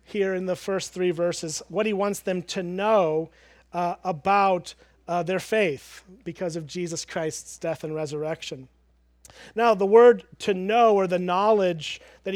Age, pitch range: 40-59, 175-210 Hz